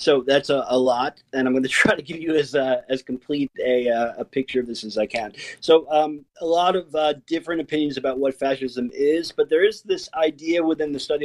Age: 40-59